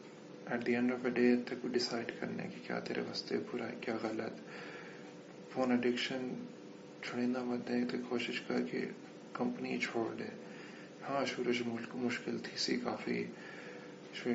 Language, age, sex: English, 20-39, male